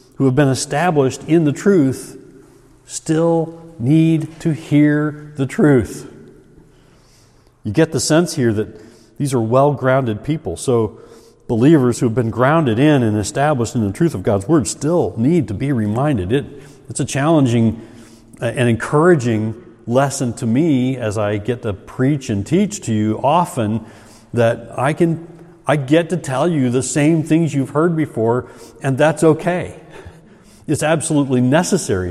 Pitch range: 115-150 Hz